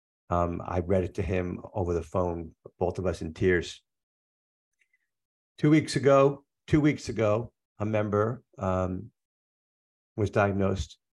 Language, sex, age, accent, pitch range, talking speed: English, male, 50-69, American, 90-115 Hz, 135 wpm